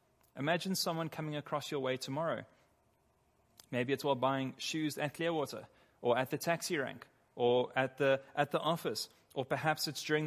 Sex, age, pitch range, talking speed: male, 30-49, 130-175 Hz, 170 wpm